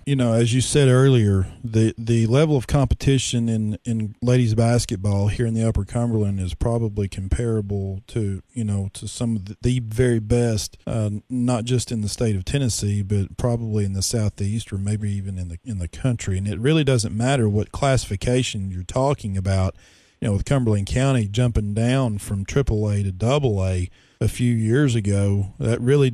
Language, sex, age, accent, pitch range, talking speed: English, male, 40-59, American, 105-130 Hz, 185 wpm